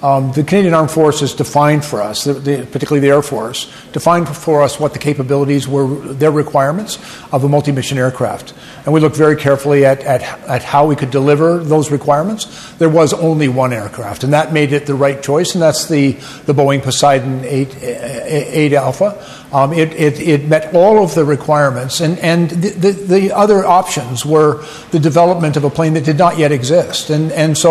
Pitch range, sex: 145-165 Hz, male